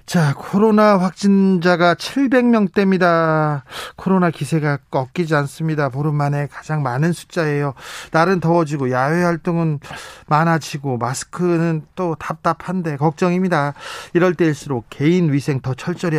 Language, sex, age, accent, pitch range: Korean, male, 40-59, native, 135-180 Hz